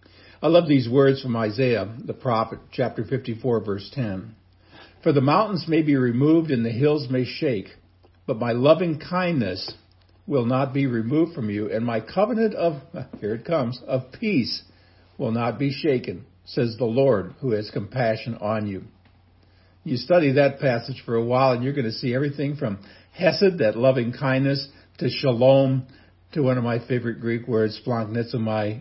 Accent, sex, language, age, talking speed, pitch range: American, male, English, 60-79, 170 wpm, 105-135 Hz